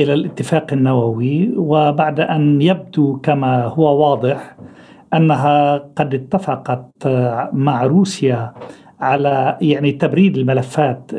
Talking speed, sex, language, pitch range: 95 wpm, male, Arabic, 140-180 Hz